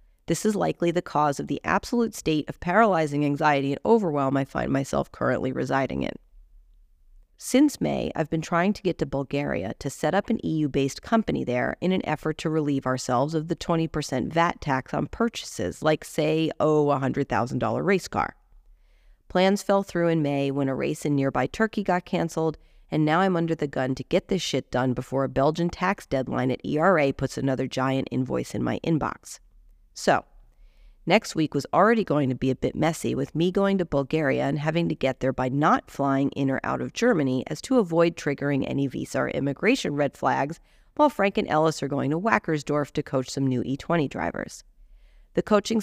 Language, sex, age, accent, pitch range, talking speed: English, female, 40-59, American, 130-170 Hz, 195 wpm